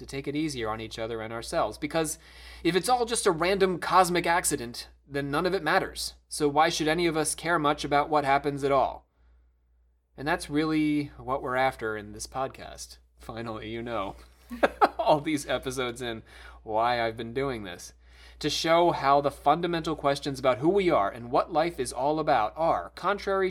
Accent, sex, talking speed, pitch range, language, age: American, male, 190 wpm, 110-145 Hz, English, 30-49